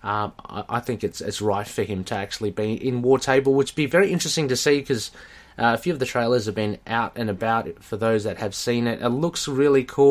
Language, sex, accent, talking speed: English, male, Australian, 250 wpm